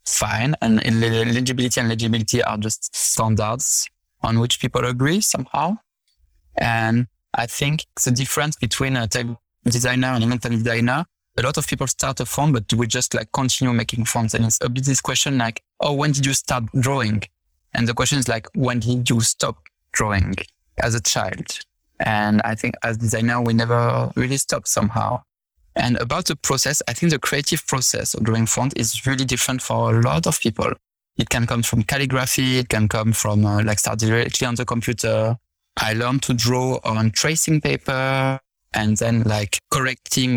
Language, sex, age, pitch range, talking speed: English, male, 20-39, 110-130 Hz, 185 wpm